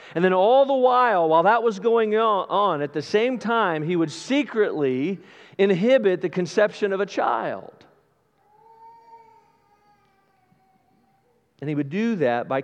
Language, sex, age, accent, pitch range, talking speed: English, male, 40-59, American, 165-220 Hz, 140 wpm